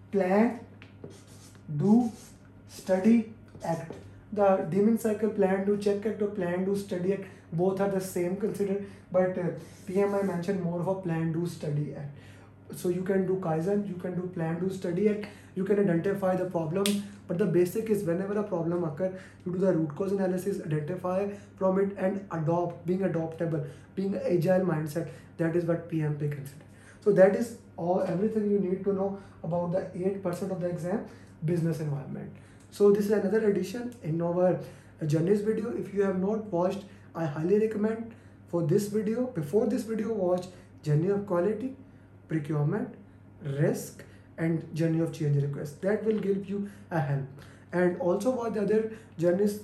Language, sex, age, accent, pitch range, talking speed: English, male, 20-39, Indian, 165-200 Hz, 170 wpm